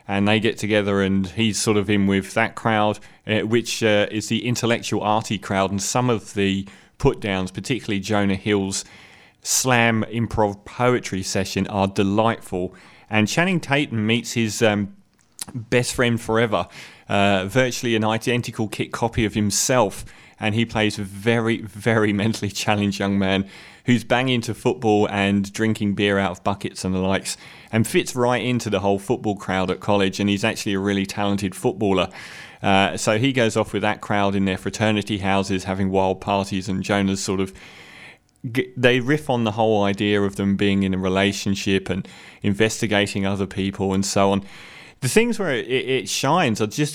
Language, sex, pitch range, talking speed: English, male, 100-115 Hz, 175 wpm